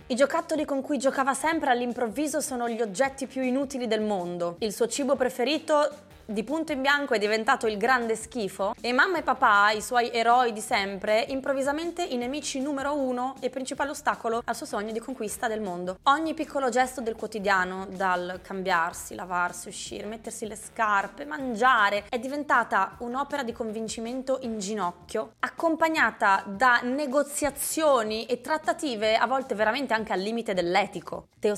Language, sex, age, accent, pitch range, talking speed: Italian, female, 20-39, native, 195-265 Hz, 160 wpm